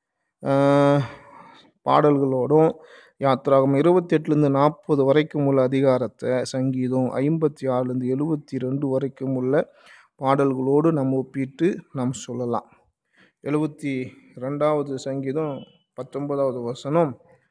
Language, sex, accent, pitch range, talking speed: Tamil, male, native, 130-155 Hz, 70 wpm